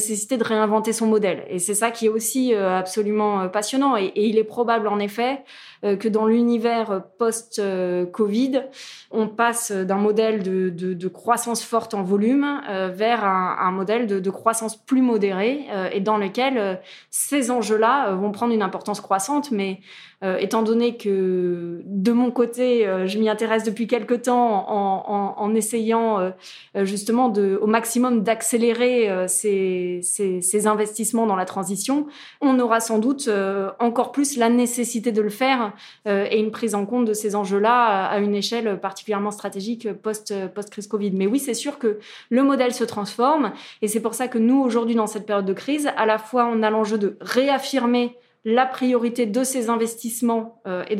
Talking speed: 175 wpm